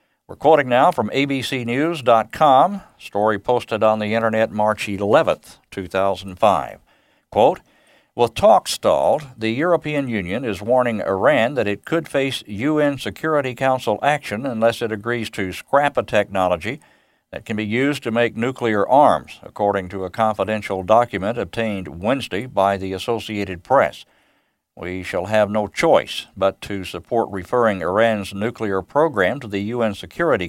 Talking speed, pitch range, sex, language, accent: 145 wpm, 100-120 Hz, male, English, American